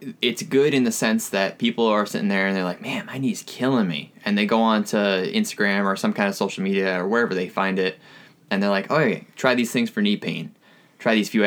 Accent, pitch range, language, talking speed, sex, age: American, 95-115 Hz, English, 250 wpm, male, 20-39